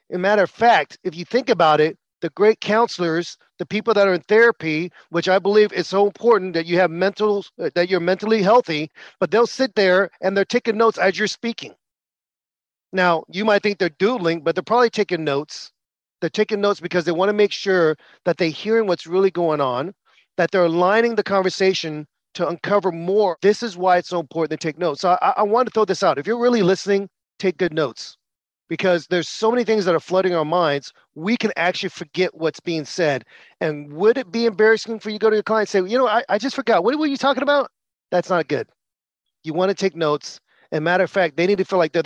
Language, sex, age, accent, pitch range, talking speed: English, male, 40-59, American, 165-210 Hz, 225 wpm